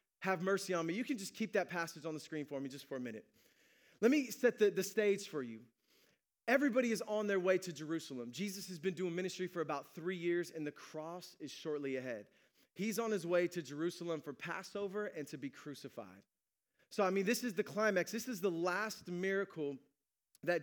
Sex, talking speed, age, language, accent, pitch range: male, 215 wpm, 30-49, English, American, 170-210 Hz